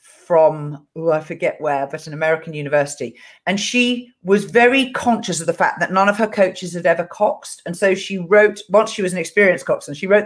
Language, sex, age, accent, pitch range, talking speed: English, female, 40-59, British, 170-225 Hz, 215 wpm